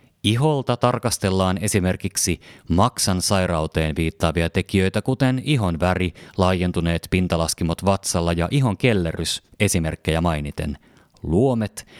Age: 30-49